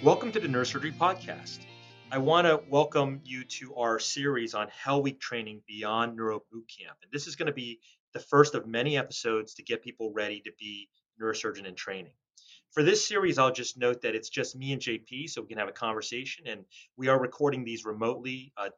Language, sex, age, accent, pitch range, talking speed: English, male, 30-49, American, 115-145 Hz, 210 wpm